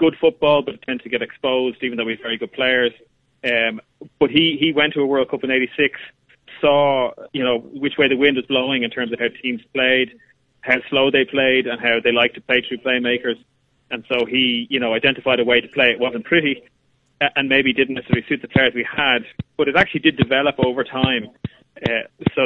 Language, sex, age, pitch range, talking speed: English, male, 30-49, 120-145 Hz, 225 wpm